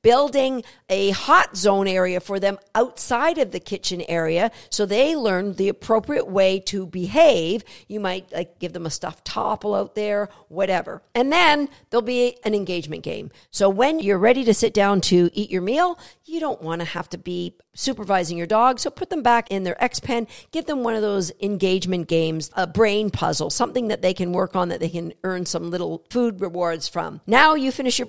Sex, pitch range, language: female, 185-260 Hz, English